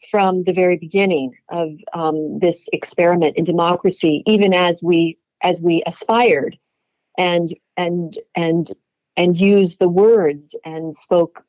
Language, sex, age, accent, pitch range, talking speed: English, female, 40-59, American, 170-210 Hz, 130 wpm